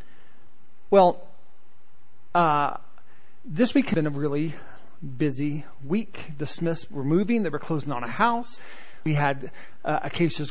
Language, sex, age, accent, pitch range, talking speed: English, male, 40-59, American, 170-235 Hz, 135 wpm